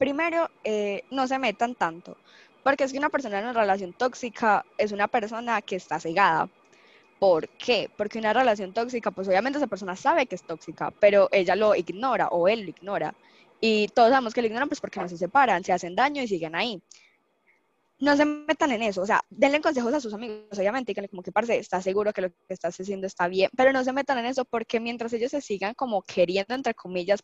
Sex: female